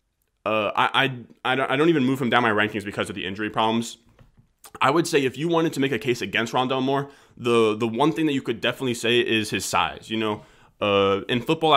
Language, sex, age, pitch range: English, male, 20-39, 105-130 Hz